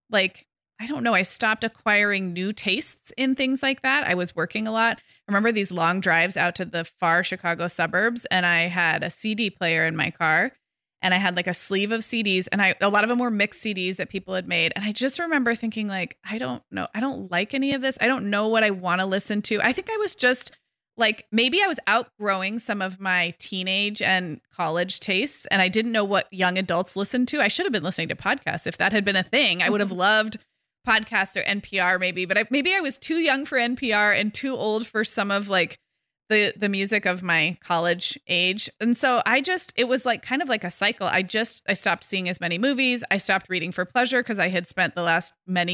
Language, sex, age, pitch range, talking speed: English, female, 20-39, 180-230 Hz, 240 wpm